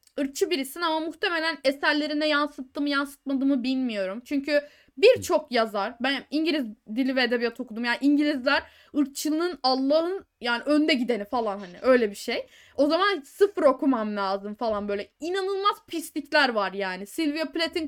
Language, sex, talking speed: Turkish, female, 150 wpm